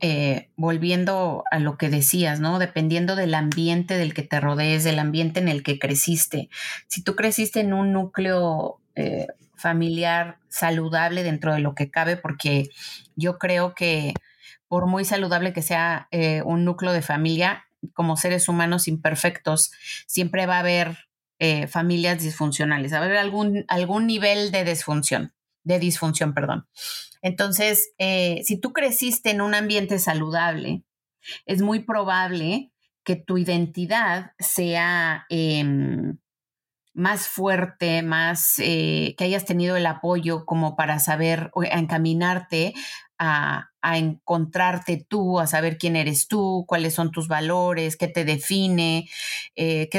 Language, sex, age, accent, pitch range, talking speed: Spanish, female, 30-49, Mexican, 160-185 Hz, 145 wpm